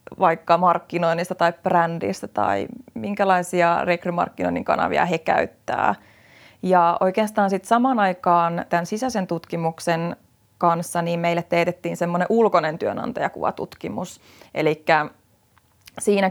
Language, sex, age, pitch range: Finnish, female, 30-49, 170-195 Hz